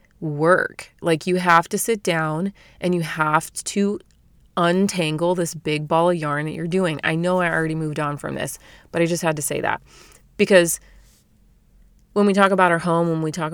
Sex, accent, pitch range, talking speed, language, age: female, American, 150-180 Hz, 200 wpm, English, 30-49